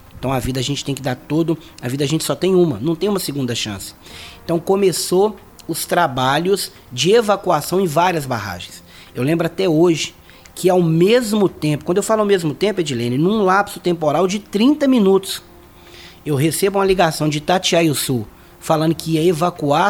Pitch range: 130-190 Hz